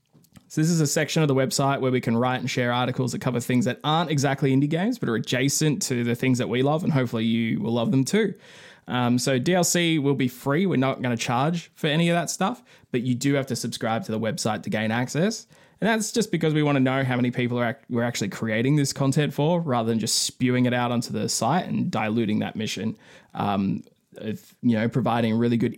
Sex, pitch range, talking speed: male, 125-170 Hz, 240 wpm